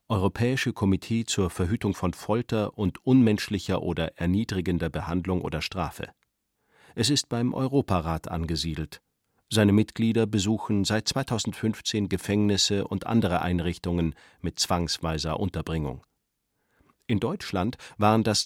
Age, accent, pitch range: 40-59, German, 90-115 Hz